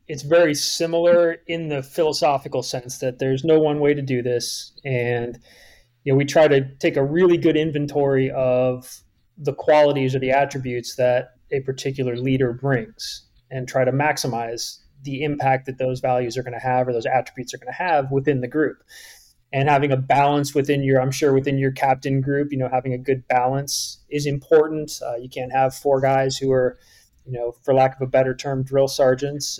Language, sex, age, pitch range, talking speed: English, male, 30-49, 125-145 Hz, 200 wpm